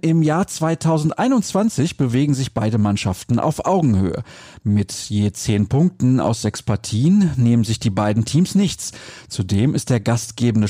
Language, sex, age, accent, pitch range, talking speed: German, male, 40-59, German, 110-150 Hz, 145 wpm